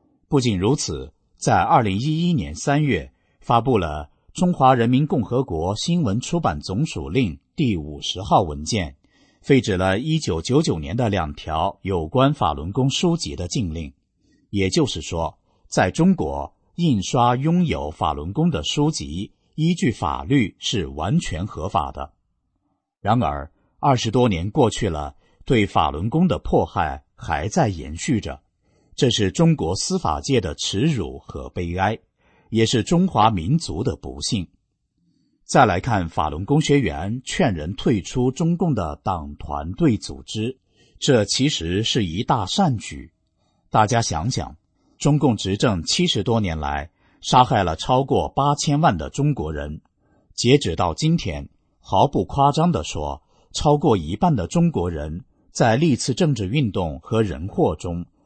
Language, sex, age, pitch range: English, male, 50-69, 85-140 Hz